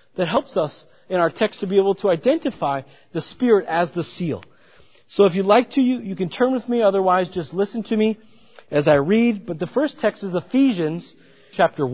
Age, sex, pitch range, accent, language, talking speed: 40-59, male, 180-235 Hz, American, English, 205 wpm